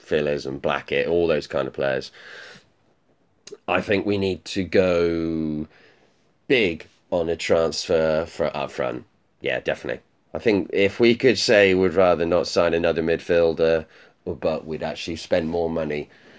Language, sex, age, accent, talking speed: English, male, 30-49, British, 150 wpm